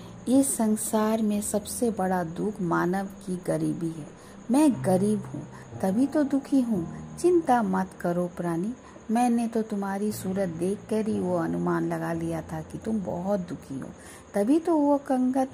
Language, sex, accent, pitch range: Hindi, female, native, 185-225 Hz